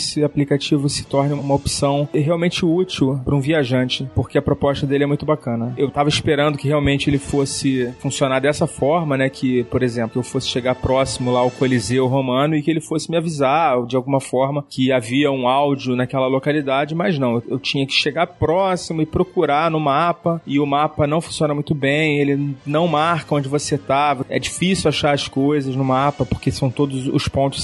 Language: Portuguese